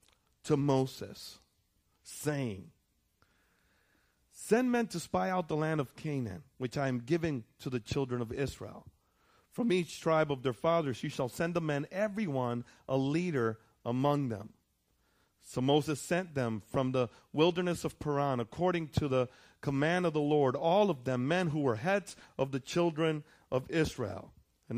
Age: 40-59